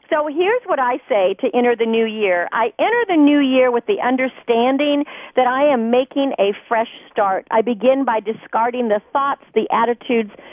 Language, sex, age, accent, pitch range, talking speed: English, female, 50-69, American, 220-285 Hz, 190 wpm